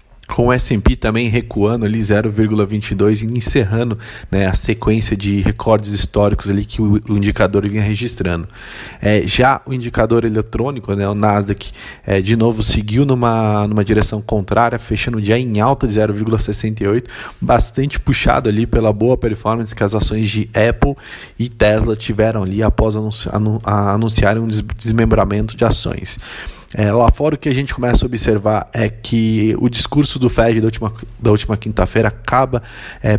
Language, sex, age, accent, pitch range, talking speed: Portuguese, male, 20-39, Brazilian, 105-115 Hz, 155 wpm